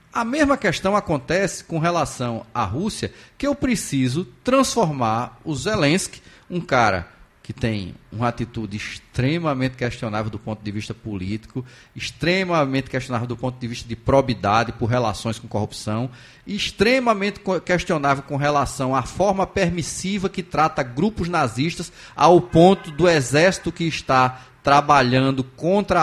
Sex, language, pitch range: male, Portuguese, 125-180 Hz